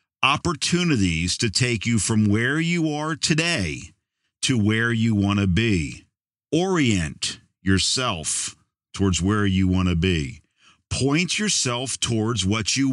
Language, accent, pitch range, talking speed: English, American, 95-130 Hz, 130 wpm